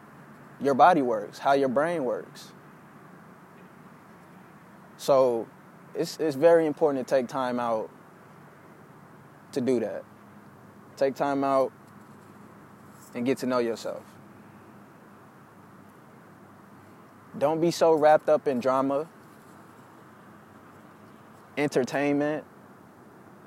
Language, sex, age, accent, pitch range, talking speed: English, male, 20-39, American, 140-175 Hz, 90 wpm